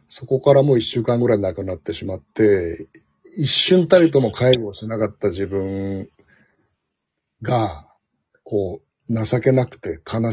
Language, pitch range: Japanese, 105-145 Hz